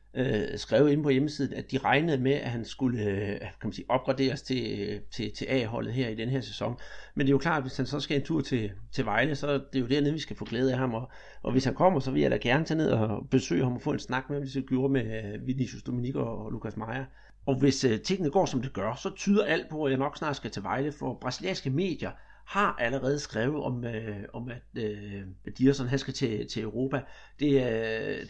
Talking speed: 255 wpm